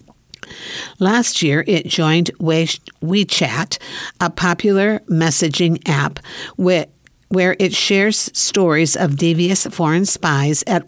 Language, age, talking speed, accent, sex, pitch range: English, 60-79, 100 wpm, American, female, 150-190 Hz